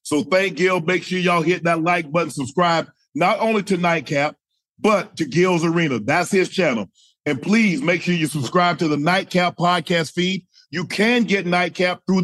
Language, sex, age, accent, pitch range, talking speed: English, male, 40-59, American, 145-175 Hz, 185 wpm